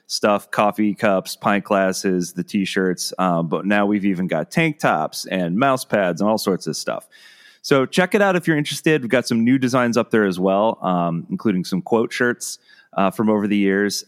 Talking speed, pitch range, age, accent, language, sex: 205 wpm, 95-125 Hz, 30-49, American, English, male